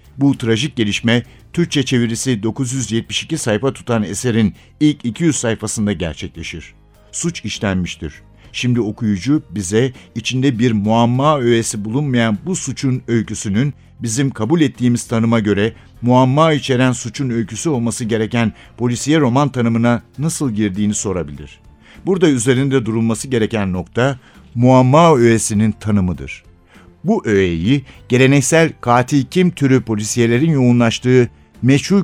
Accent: native